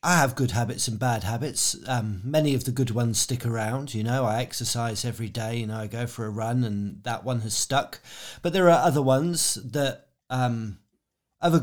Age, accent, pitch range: 40-59, British, 120-155 Hz